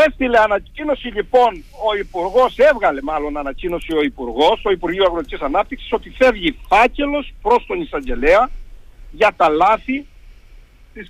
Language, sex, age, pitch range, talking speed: Greek, male, 50-69, 190-270 Hz, 130 wpm